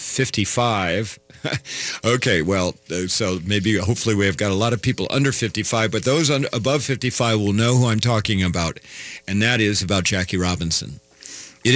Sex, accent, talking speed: male, American, 160 wpm